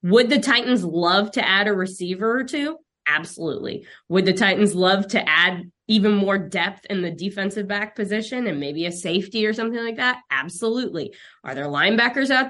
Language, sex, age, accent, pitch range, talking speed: English, female, 20-39, American, 175-240 Hz, 180 wpm